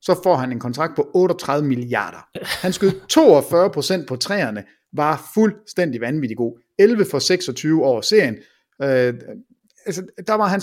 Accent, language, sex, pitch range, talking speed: Danish, English, male, 145-215 Hz, 160 wpm